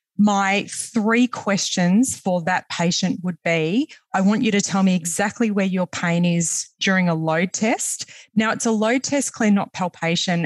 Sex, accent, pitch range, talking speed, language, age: female, Australian, 180-220 Hz, 180 wpm, English, 20-39